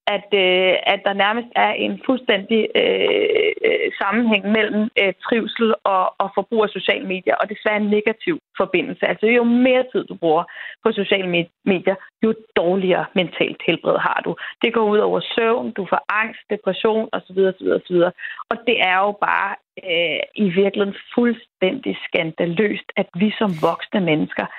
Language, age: Danish, 30-49